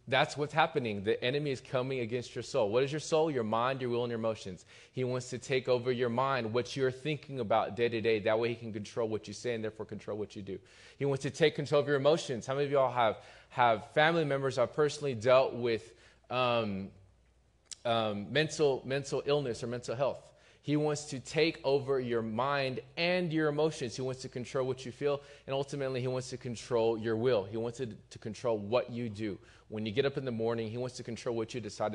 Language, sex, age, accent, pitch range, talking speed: English, male, 20-39, American, 110-135 Hz, 235 wpm